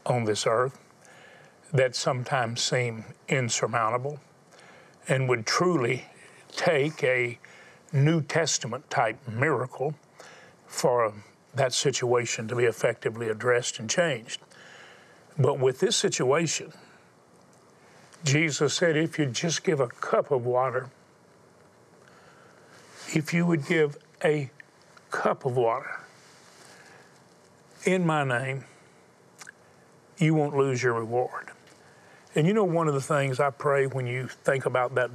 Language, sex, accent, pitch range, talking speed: English, male, American, 120-155 Hz, 120 wpm